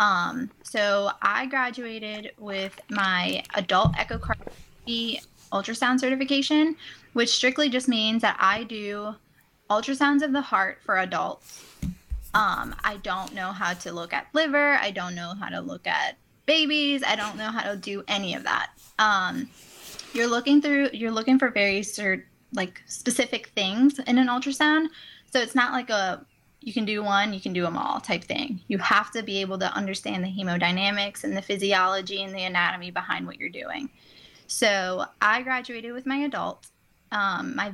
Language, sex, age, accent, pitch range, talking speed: English, female, 10-29, American, 195-255 Hz, 170 wpm